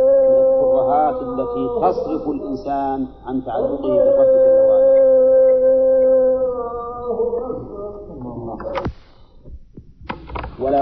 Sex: male